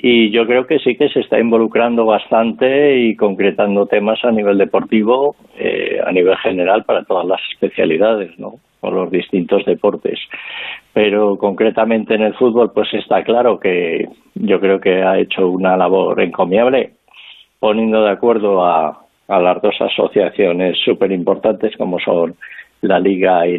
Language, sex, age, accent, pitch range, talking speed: Spanish, male, 50-69, Spanish, 100-125 Hz, 155 wpm